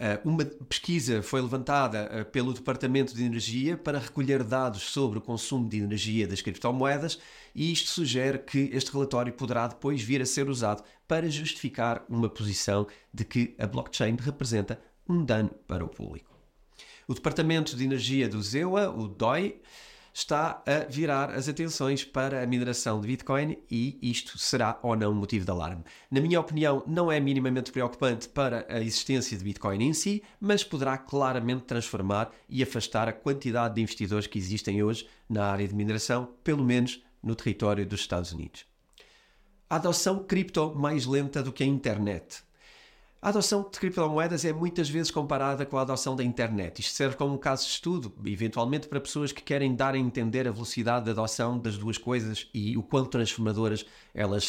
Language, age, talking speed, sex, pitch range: Portuguese, 30-49, 175 wpm, male, 110-140 Hz